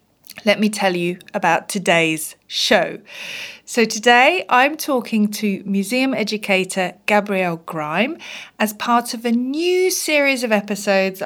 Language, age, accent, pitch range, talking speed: English, 40-59, British, 190-235 Hz, 130 wpm